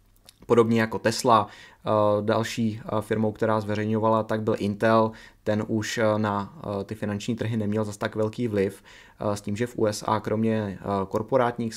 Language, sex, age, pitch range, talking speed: Czech, male, 20-39, 105-115 Hz, 145 wpm